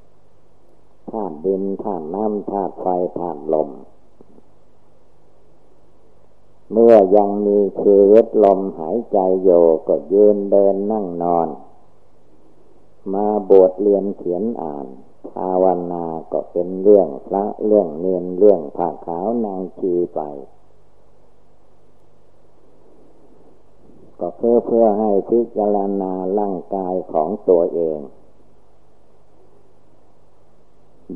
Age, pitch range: 60-79, 85-100 Hz